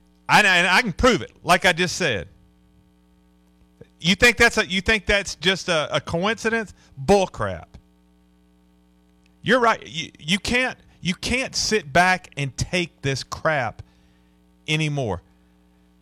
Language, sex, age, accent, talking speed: English, male, 40-59, American, 140 wpm